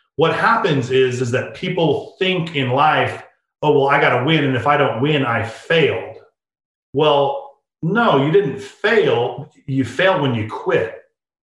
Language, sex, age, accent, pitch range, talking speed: English, male, 40-59, American, 135-175 Hz, 170 wpm